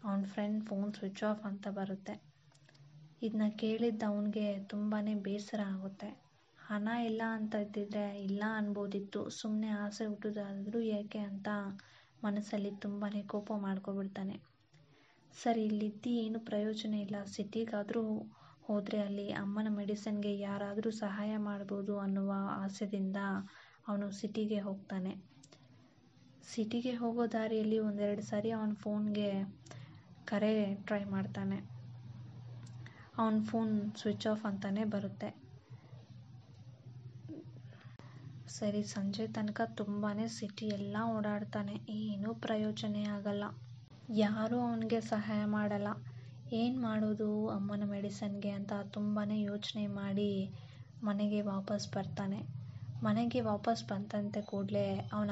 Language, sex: Kannada, female